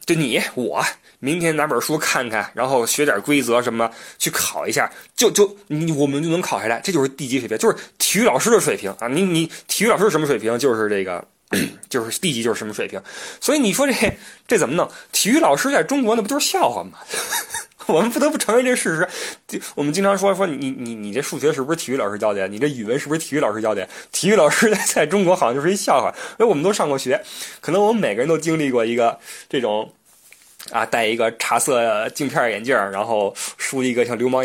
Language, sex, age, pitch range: Chinese, male, 20-39, 120-195 Hz